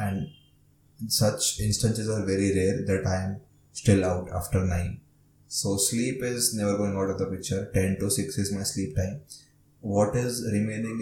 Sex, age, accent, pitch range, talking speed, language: male, 20-39, Indian, 100-115 Hz, 175 wpm, English